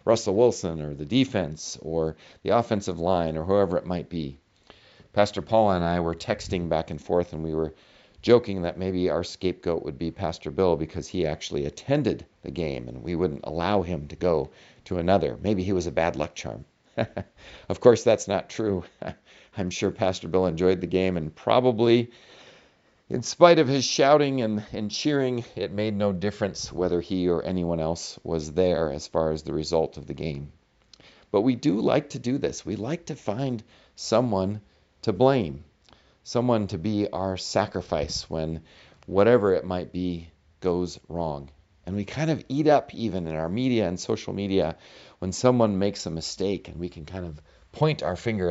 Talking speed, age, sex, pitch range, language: 185 wpm, 50-69, male, 80-105 Hz, English